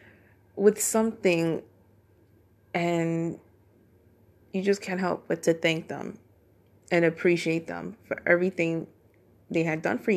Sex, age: female, 20-39